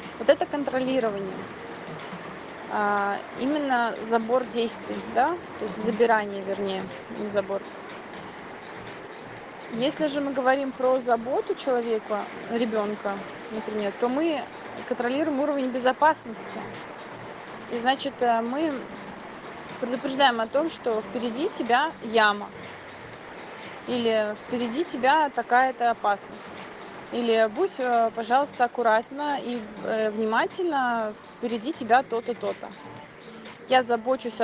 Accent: native